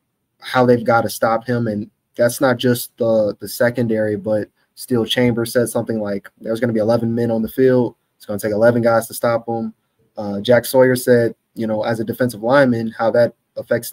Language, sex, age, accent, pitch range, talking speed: English, male, 20-39, American, 110-125 Hz, 215 wpm